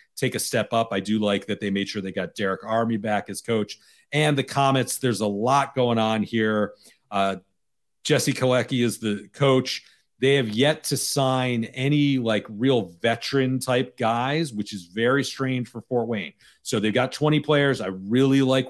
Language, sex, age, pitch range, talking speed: English, male, 40-59, 105-130 Hz, 190 wpm